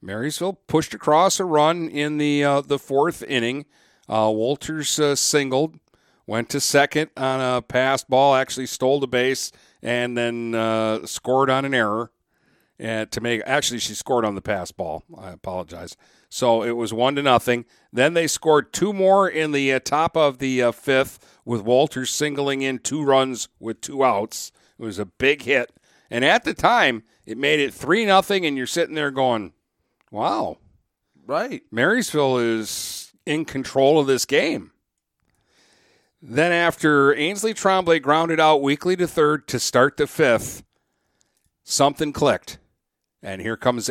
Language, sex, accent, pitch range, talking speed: English, male, American, 120-145 Hz, 160 wpm